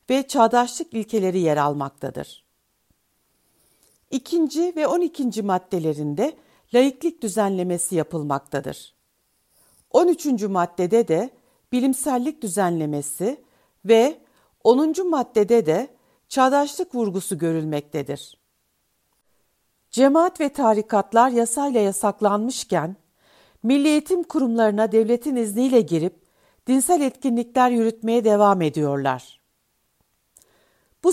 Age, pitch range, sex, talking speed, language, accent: 60-79, 190-260 Hz, female, 80 wpm, Turkish, native